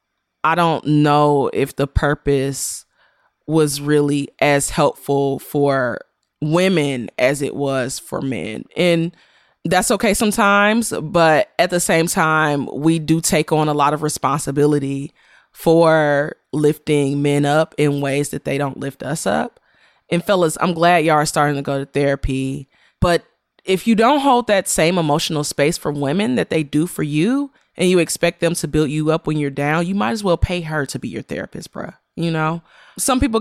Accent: American